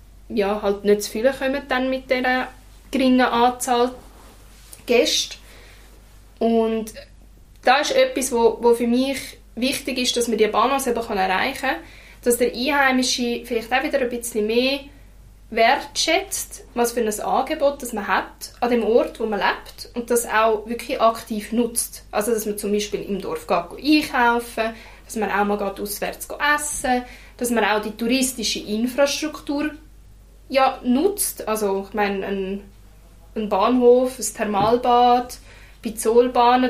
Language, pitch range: German, 215-265 Hz